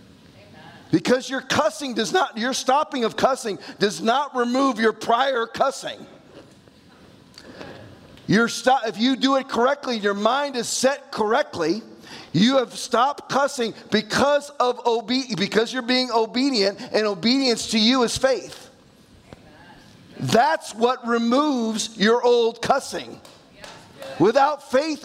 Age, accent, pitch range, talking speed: 40-59, American, 225-265 Hz, 125 wpm